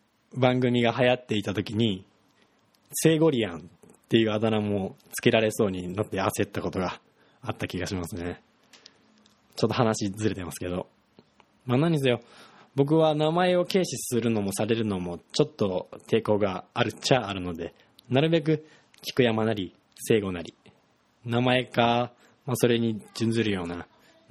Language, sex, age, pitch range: Japanese, male, 20-39, 100-130 Hz